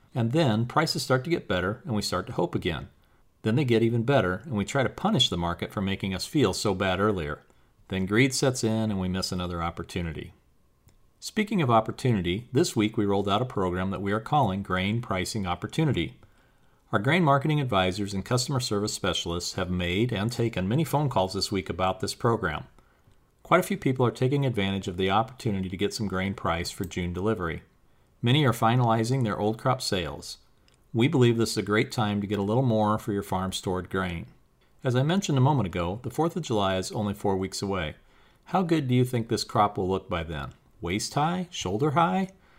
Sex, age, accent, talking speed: male, 40-59, American, 210 wpm